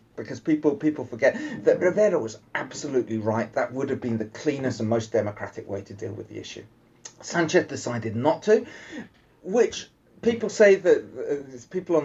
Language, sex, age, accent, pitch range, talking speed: English, male, 30-49, British, 115-150 Hz, 170 wpm